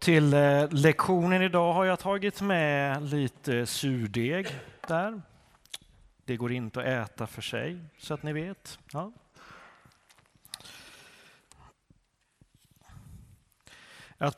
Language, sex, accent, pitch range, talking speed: Swedish, male, native, 115-155 Hz, 95 wpm